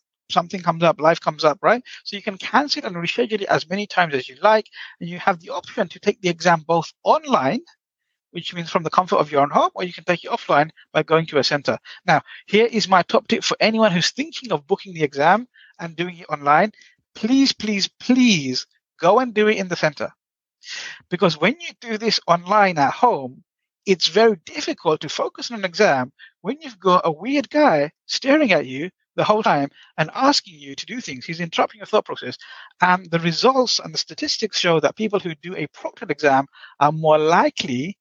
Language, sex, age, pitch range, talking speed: English, male, 60-79, 165-225 Hz, 215 wpm